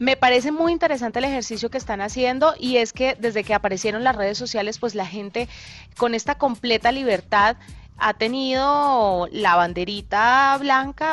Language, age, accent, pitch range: Spanish, 30-49, Colombian, 205-260 Hz